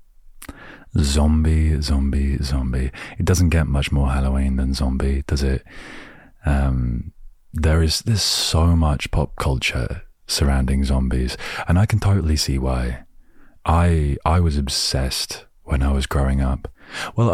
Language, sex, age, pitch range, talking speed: English, male, 30-49, 70-85 Hz, 135 wpm